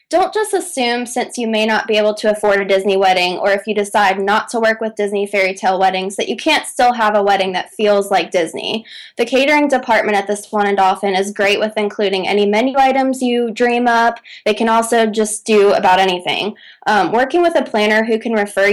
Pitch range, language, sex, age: 200-235 Hz, English, female, 20-39